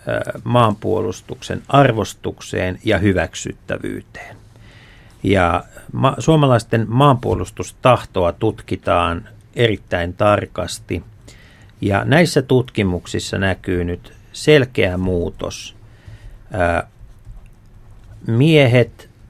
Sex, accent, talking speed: male, native, 55 wpm